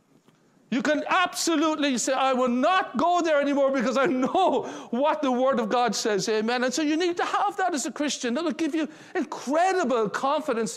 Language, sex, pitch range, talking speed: English, male, 255-320 Hz, 200 wpm